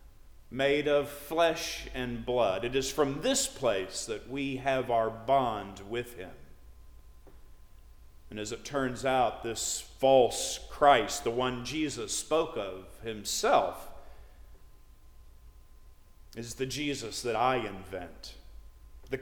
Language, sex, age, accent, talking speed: English, male, 50-69, American, 120 wpm